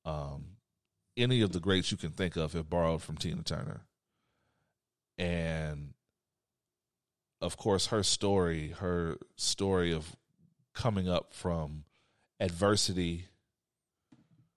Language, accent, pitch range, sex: English, American, 80-100 Hz, male